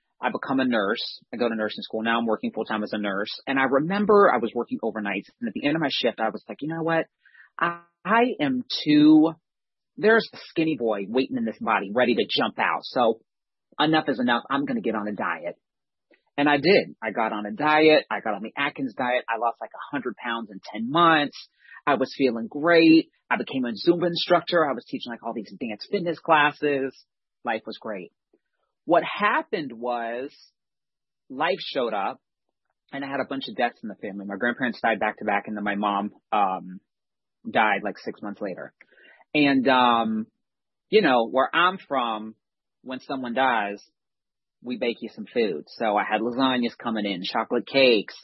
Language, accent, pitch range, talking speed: English, American, 110-160 Hz, 200 wpm